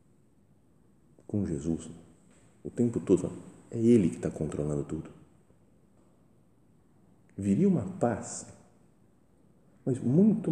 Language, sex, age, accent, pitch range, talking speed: Portuguese, male, 40-59, Brazilian, 80-115 Hz, 95 wpm